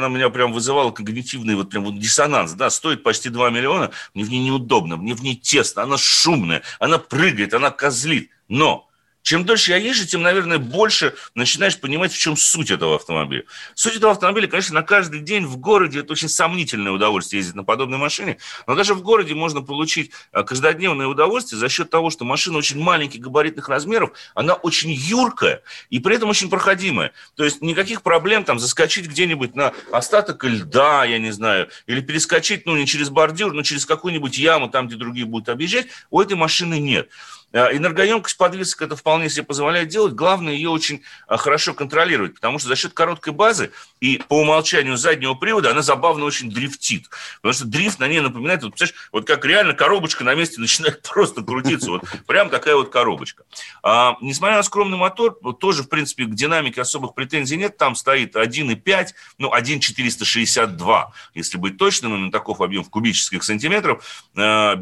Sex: male